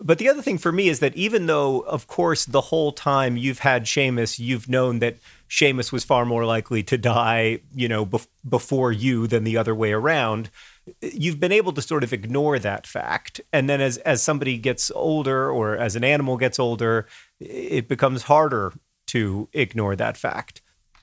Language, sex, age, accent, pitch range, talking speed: English, male, 30-49, American, 120-145 Hz, 190 wpm